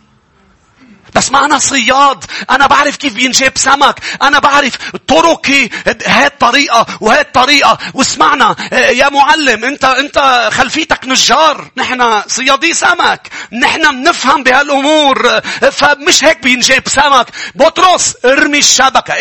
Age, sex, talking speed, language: 40-59, male, 110 wpm, English